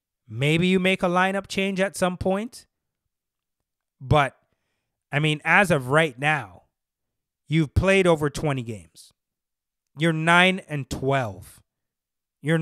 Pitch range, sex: 130-165 Hz, male